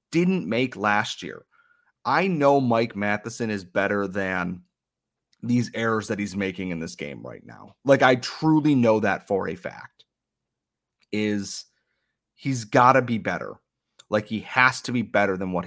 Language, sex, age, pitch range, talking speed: English, male, 30-49, 100-130 Hz, 160 wpm